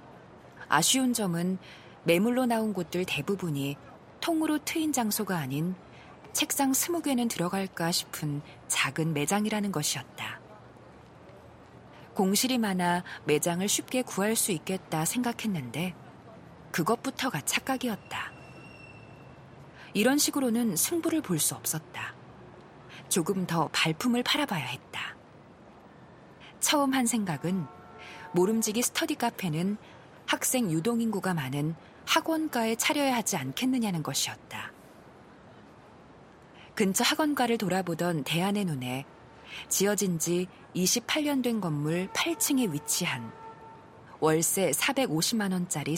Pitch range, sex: 160-245 Hz, female